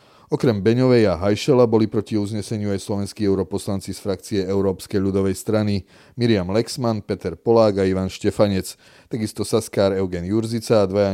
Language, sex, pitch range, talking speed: Slovak, male, 95-110 Hz, 150 wpm